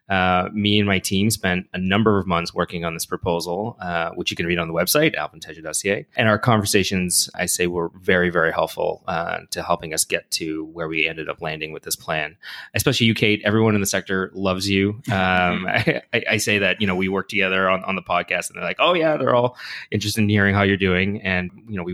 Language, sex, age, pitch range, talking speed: English, male, 20-39, 85-105 Hz, 235 wpm